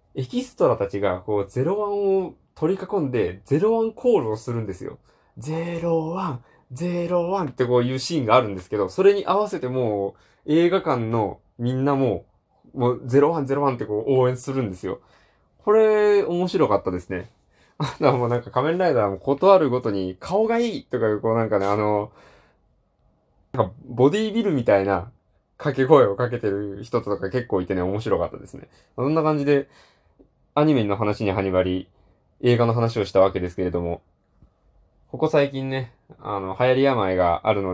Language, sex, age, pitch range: Japanese, male, 20-39, 100-145 Hz